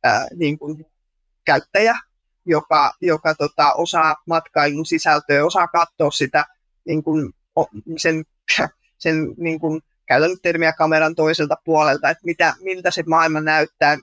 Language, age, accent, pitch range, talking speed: Finnish, 20-39, native, 150-170 Hz, 130 wpm